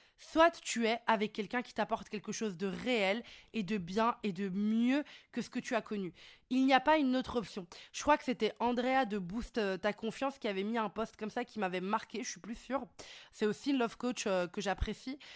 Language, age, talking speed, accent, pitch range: French, 20-39, 240 wpm, French, 205-255 Hz